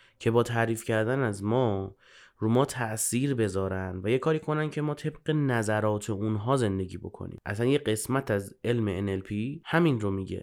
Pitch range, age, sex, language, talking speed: 110-165 Hz, 30-49, male, Persian, 175 wpm